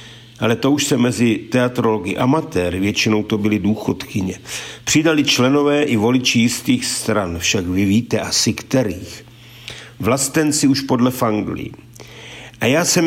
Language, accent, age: Czech, native, 50-69